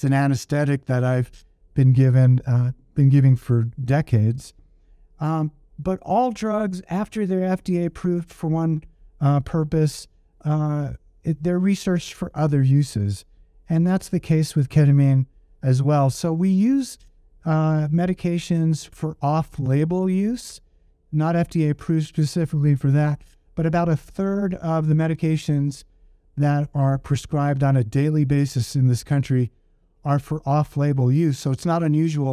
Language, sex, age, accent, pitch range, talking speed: English, male, 50-69, American, 130-160 Hz, 145 wpm